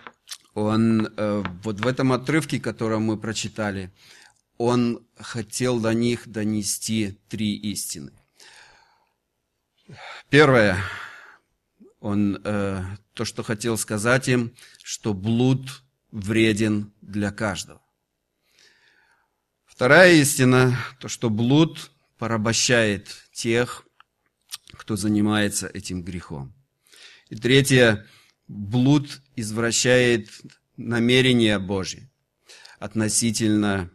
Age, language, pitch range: 40-59, Russian, 100-120 Hz